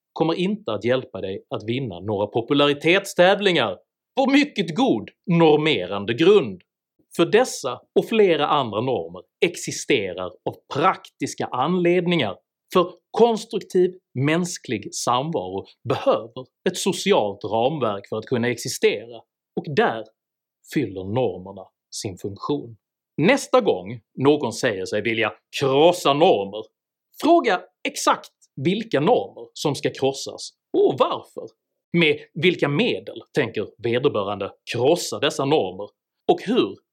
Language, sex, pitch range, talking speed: Swedish, male, 135-215 Hz, 110 wpm